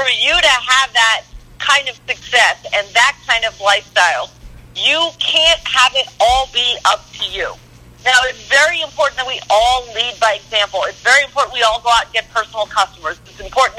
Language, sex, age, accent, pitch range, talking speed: English, female, 50-69, American, 230-285 Hz, 195 wpm